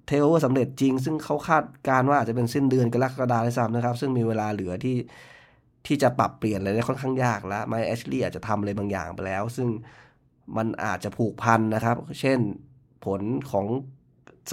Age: 20-39